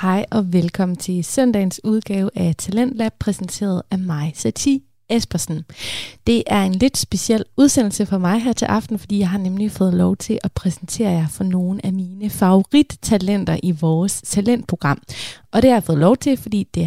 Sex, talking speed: female, 180 wpm